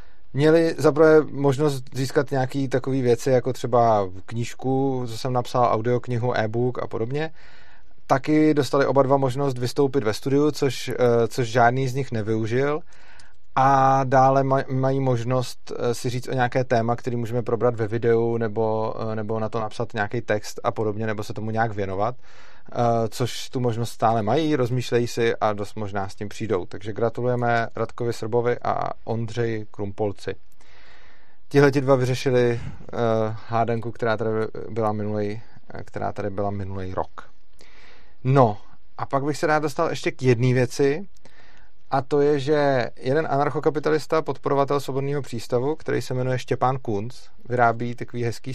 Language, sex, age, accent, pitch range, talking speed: Czech, male, 30-49, native, 115-135 Hz, 145 wpm